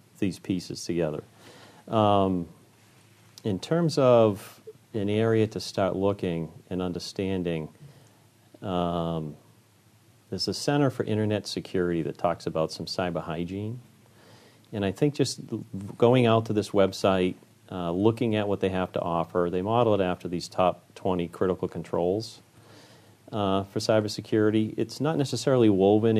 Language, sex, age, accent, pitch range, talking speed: English, male, 40-59, American, 90-115 Hz, 135 wpm